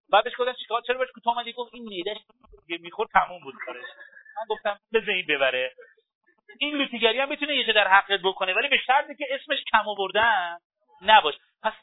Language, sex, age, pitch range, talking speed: Persian, male, 40-59, 175-260 Hz, 180 wpm